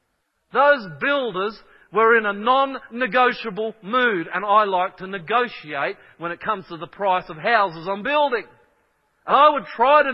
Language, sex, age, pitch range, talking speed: English, male, 40-59, 200-260 Hz, 160 wpm